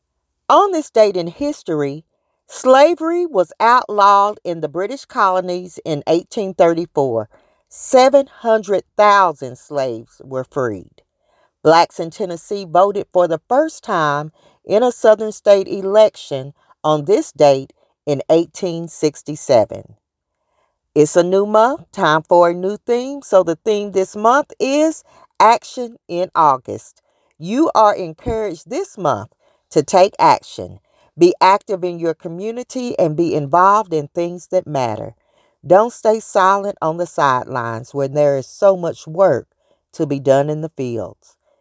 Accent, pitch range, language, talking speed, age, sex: American, 155-215 Hz, English, 135 wpm, 40-59, female